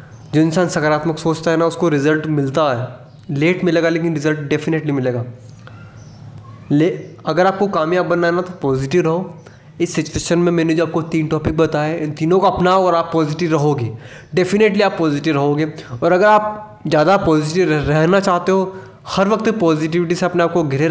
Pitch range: 140-175 Hz